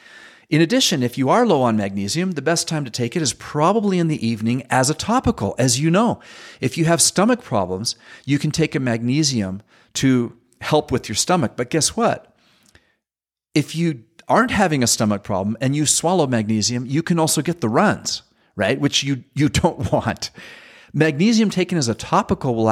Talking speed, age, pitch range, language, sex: 190 wpm, 40-59, 115-165 Hz, English, male